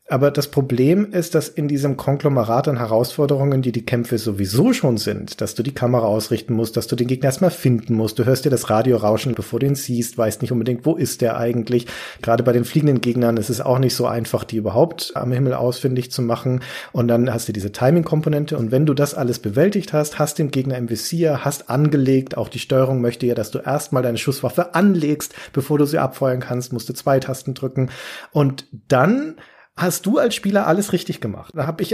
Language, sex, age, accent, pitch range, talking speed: German, male, 40-59, German, 120-160 Hz, 220 wpm